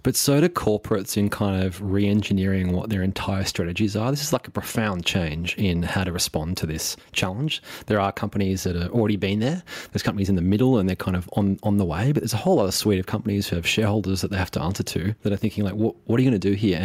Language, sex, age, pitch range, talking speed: English, male, 20-39, 95-115 Hz, 270 wpm